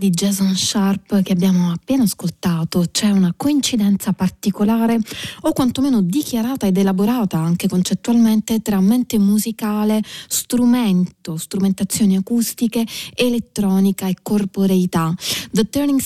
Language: Italian